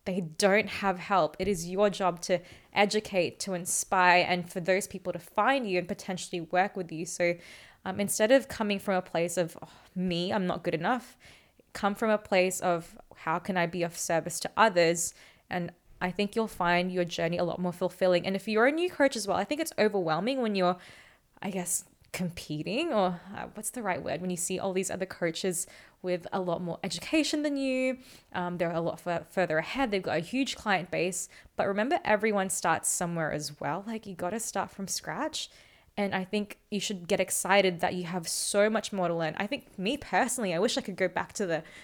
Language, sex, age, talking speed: English, female, 20-39, 220 wpm